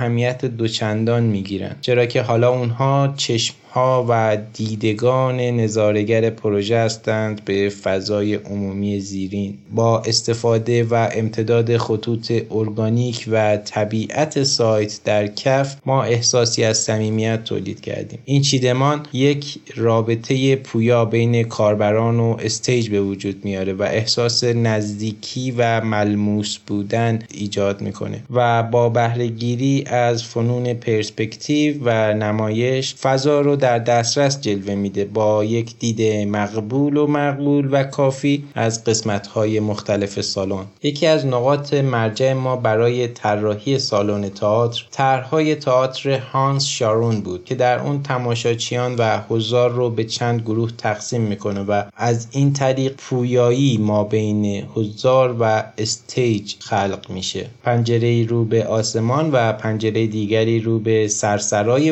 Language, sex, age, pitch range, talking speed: Persian, male, 20-39, 105-125 Hz, 125 wpm